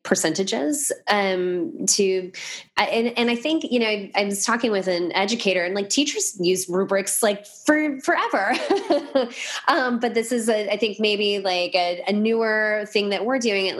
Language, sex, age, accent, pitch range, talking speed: English, female, 20-39, American, 175-220 Hz, 170 wpm